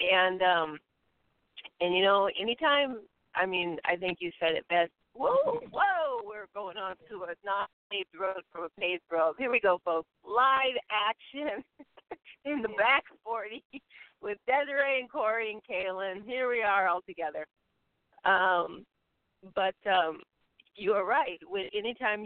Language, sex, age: English, female, 40-59